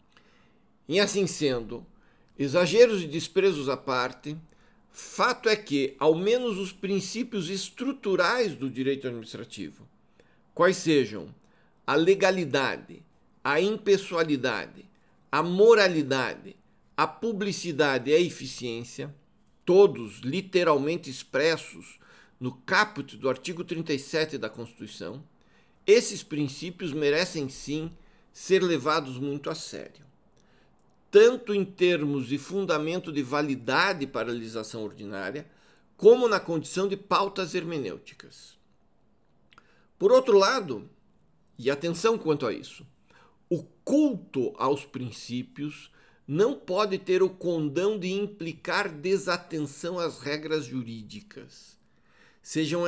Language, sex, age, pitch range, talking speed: Portuguese, male, 60-79, 140-190 Hz, 105 wpm